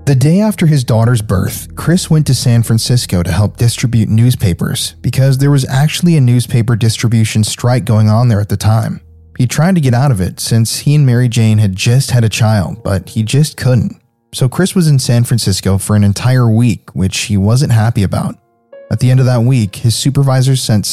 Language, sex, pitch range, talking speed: English, male, 105-130 Hz, 210 wpm